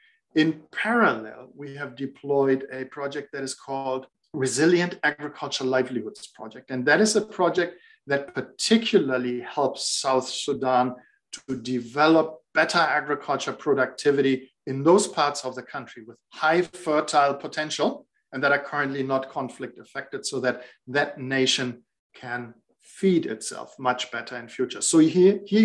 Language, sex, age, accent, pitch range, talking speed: English, male, 50-69, German, 130-180 Hz, 140 wpm